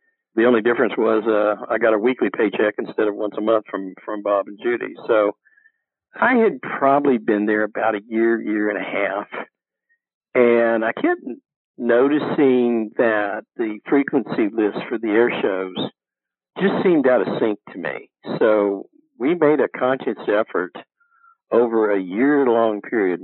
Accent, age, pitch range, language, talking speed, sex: American, 50-69, 105-150 Hz, English, 165 wpm, male